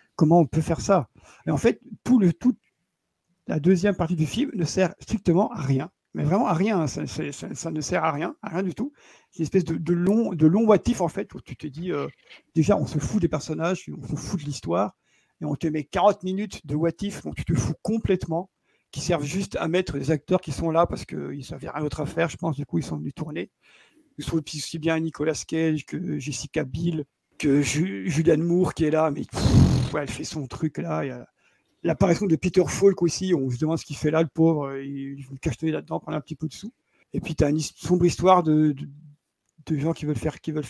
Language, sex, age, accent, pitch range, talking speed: French, male, 50-69, French, 155-185 Hz, 250 wpm